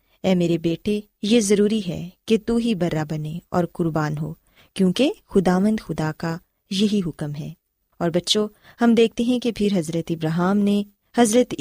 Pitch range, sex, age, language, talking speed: 175-230 Hz, female, 20-39, Urdu, 165 wpm